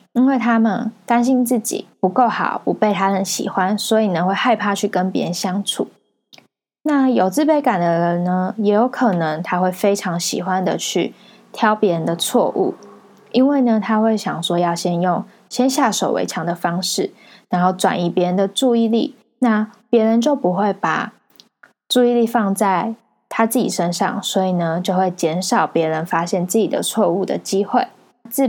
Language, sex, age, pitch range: Chinese, female, 20-39, 185-230 Hz